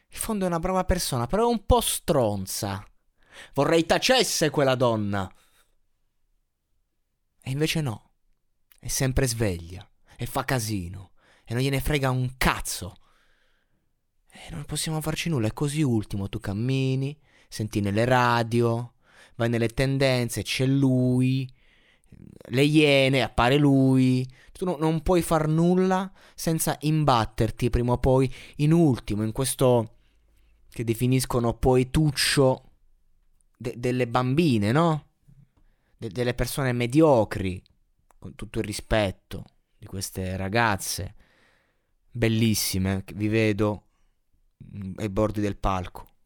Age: 30-49